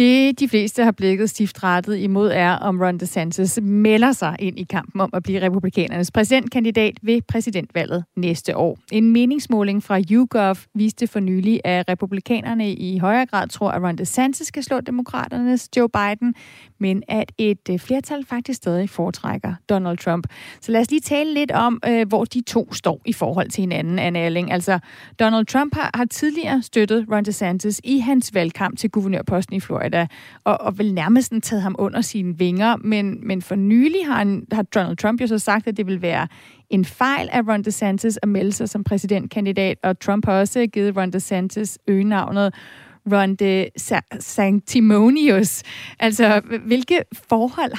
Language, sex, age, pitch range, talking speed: Danish, female, 30-49, 190-235 Hz, 170 wpm